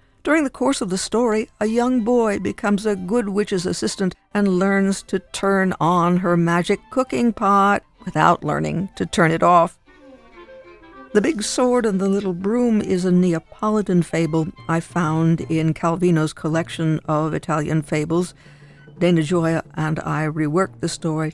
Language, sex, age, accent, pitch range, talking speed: English, female, 60-79, American, 155-200 Hz, 155 wpm